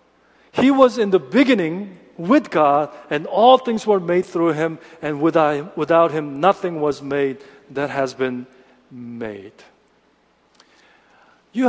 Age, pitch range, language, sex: 50-69, 150-205 Hz, Korean, male